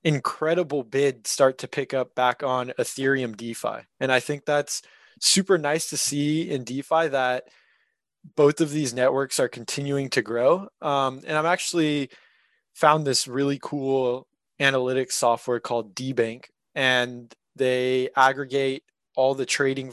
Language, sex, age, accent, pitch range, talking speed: English, male, 20-39, American, 130-155 Hz, 140 wpm